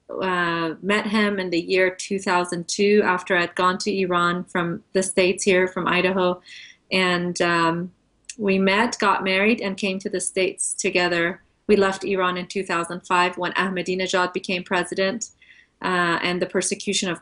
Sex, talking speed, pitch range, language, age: female, 155 wpm, 180-195 Hz, English, 30-49